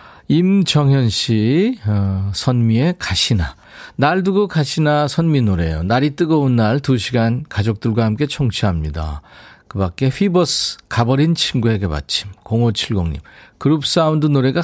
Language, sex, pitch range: Korean, male, 100-145 Hz